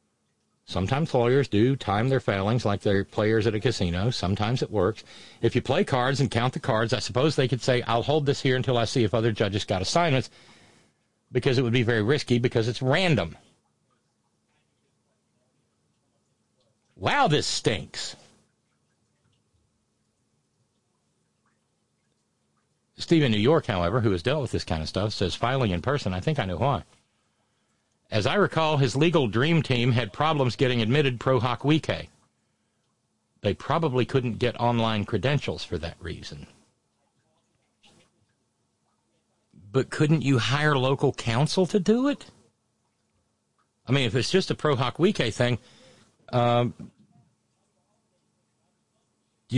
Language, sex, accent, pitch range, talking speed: English, male, American, 110-140 Hz, 140 wpm